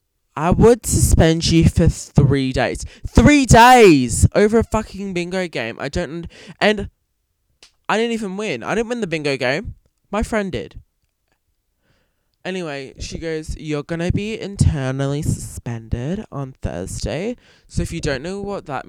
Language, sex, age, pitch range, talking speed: English, male, 20-39, 115-170 Hz, 155 wpm